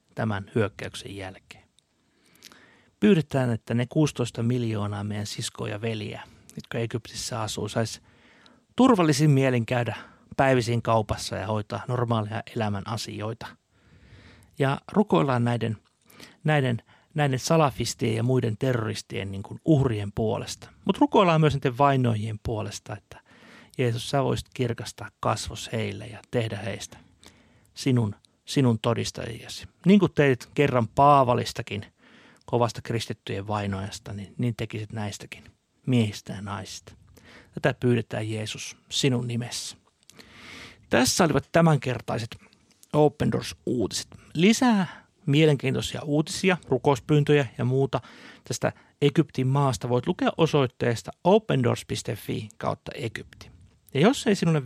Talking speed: 110 wpm